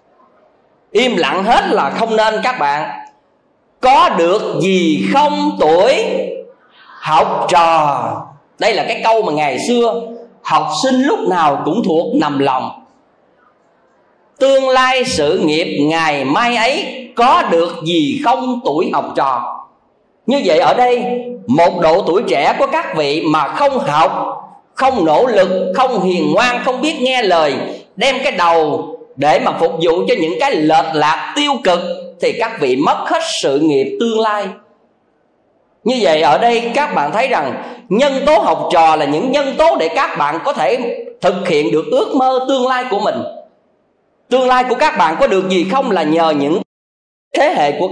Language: Vietnamese